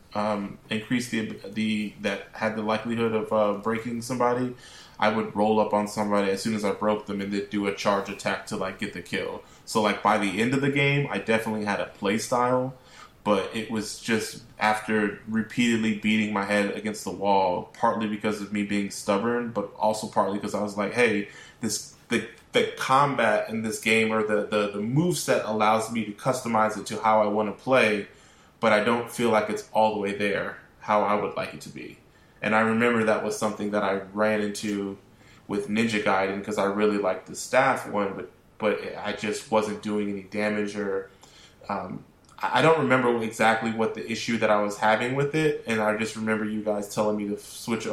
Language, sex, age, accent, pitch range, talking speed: English, male, 20-39, American, 105-110 Hz, 210 wpm